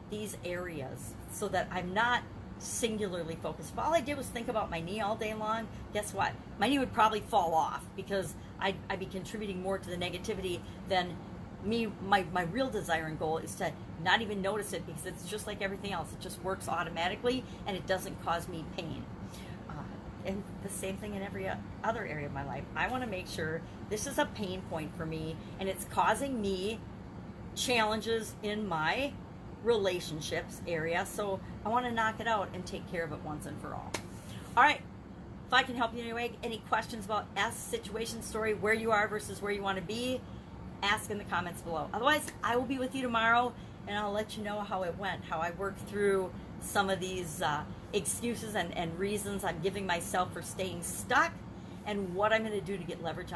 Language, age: English, 40-59